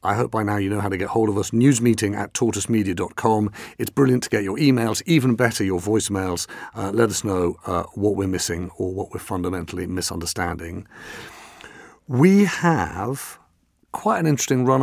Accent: British